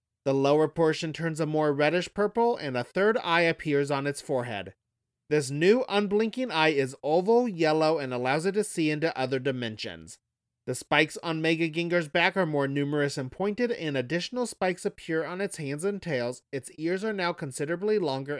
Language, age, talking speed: English, 30-49, 185 wpm